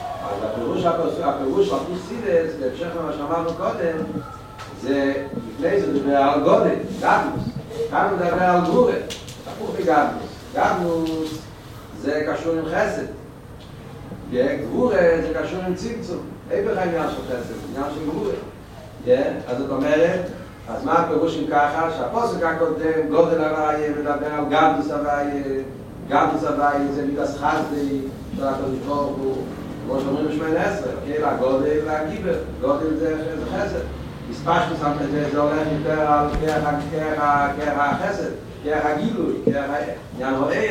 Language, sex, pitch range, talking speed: Hebrew, male, 145-190 Hz, 120 wpm